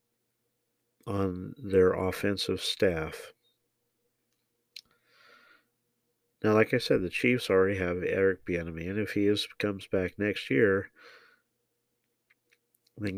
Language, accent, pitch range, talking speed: English, American, 95-125 Hz, 105 wpm